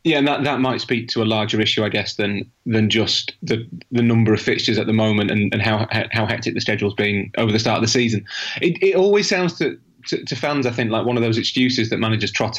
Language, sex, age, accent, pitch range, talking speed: English, male, 30-49, British, 110-125 Hz, 265 wpm